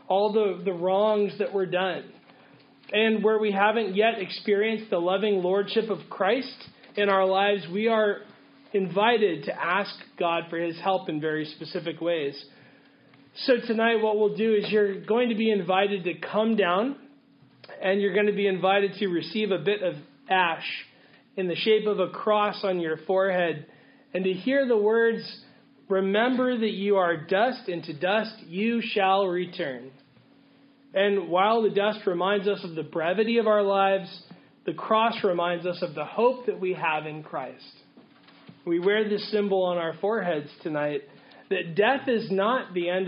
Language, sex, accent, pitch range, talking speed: English, male, American, 180-220 Hz, 170 wpm